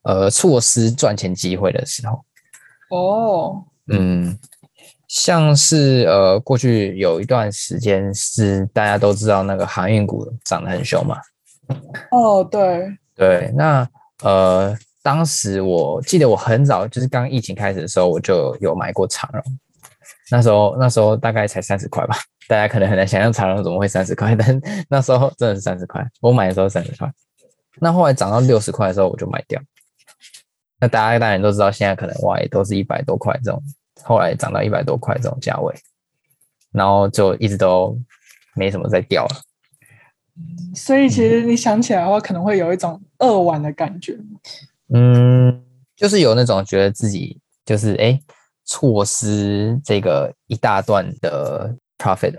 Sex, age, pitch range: male, 20-39, 100-145 Hz